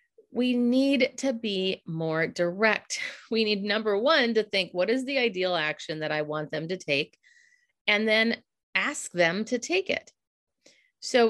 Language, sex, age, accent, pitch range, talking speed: English, female, 30-49, American, 160-225 Hz, 165 wpm